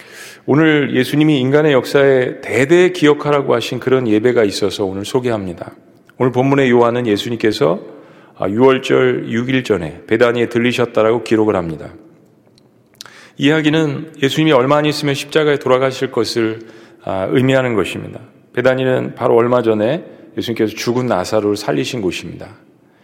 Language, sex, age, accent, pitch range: Korean, male, 40-59, native, 120-145 Hz